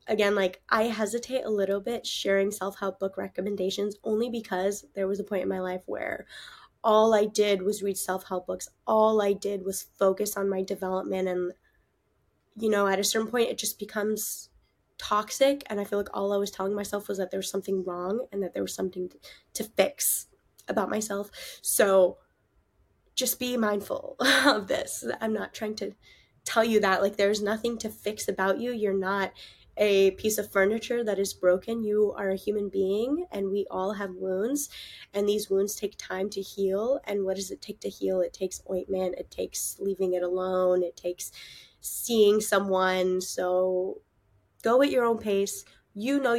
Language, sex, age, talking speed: English, female, 10-29, 185 wpm